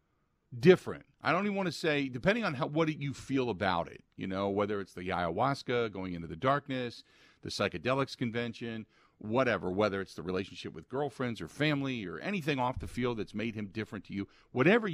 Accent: American